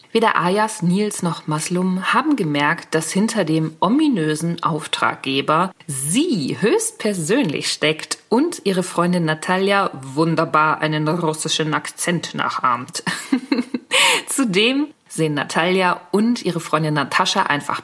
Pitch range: 160-220 Hz